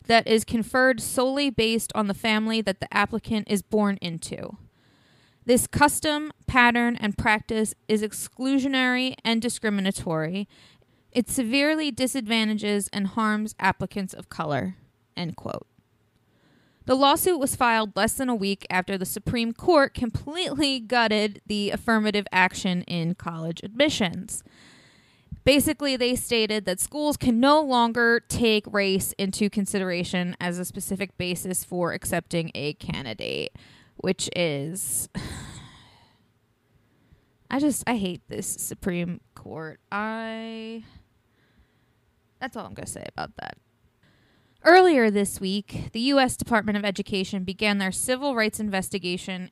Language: English